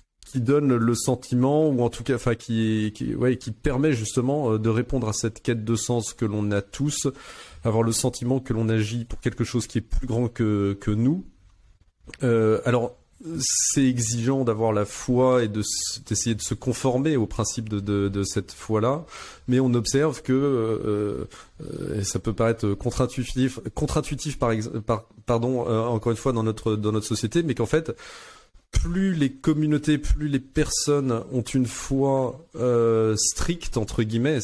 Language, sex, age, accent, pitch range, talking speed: French, male, 30-49, French, 110-130 Hz, 180 wpm